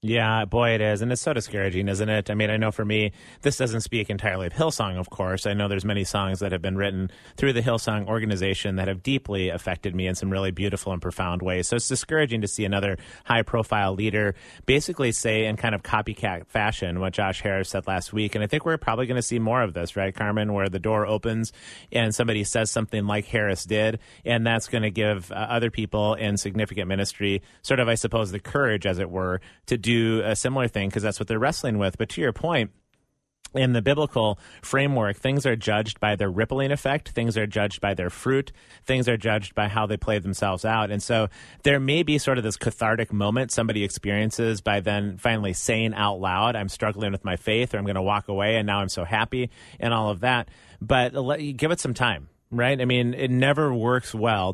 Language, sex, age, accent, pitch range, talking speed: English, male, 30-49, American, 100-120 Hz, 225 wpm